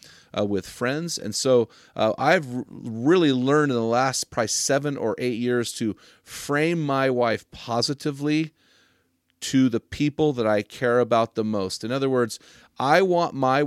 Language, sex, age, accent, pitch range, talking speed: English, male, 30-49, American, 110-140 Hz, 165 wpm